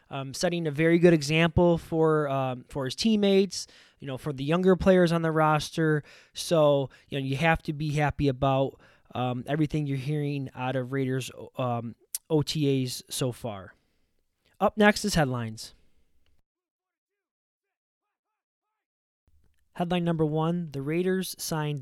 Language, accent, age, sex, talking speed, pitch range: English, American, 20-39, male, 140 wpm, 130-165 Hz